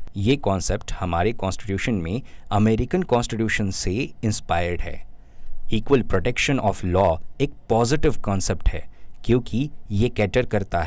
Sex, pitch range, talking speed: male, 95-120 Hz, 120 wpm